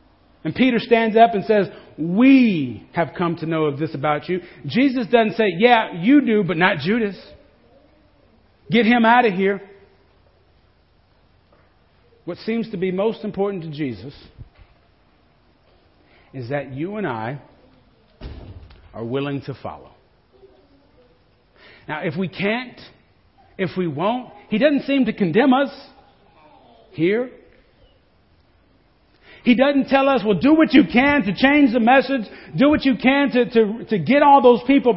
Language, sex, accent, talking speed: English, male, American, 145 wpm